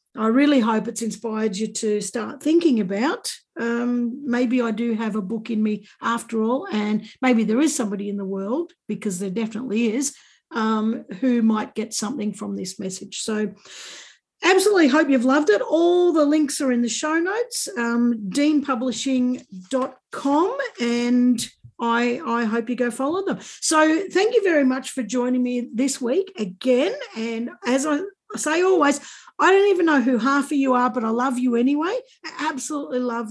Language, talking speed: English, 175 wpm